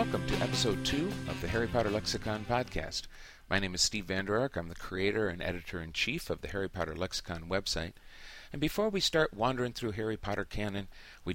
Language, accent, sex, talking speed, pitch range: English, American, male, 195 wpm, 85-110 Hz